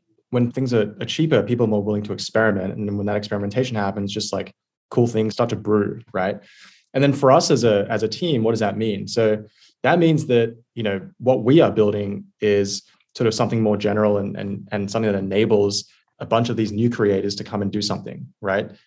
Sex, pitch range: male, 100-110 Hz